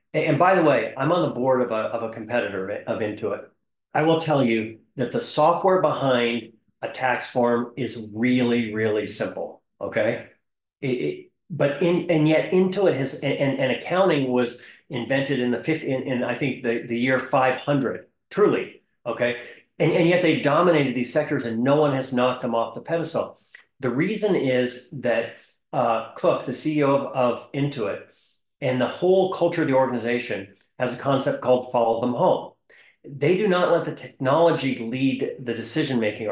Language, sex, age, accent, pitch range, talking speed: English, male, 40-59, American, 120-150 Hz, 175 wpm